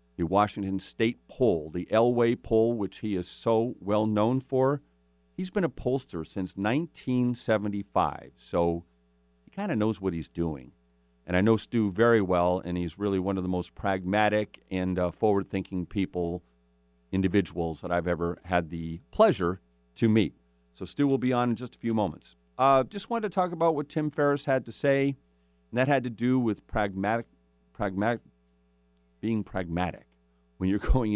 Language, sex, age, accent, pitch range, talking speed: English, male, 50-69, American, 85-110 Hz, 175 wpm